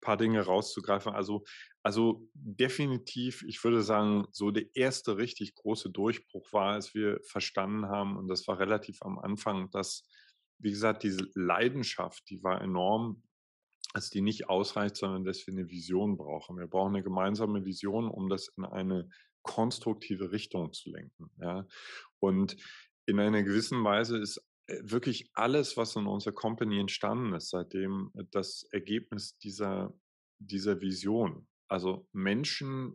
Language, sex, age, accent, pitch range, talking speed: German, male, 20-39, German, 95-110 Hz, 145 wpm